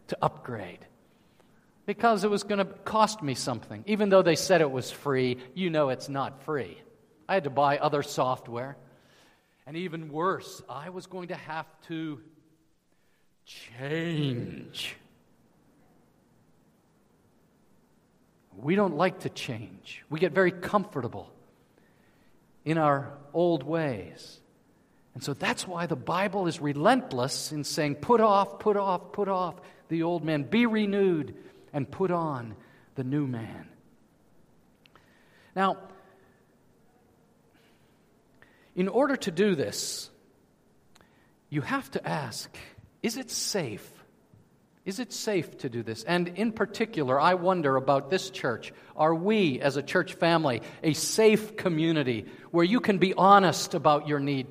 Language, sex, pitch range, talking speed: English, male, 140-190 Hz, 135 wpm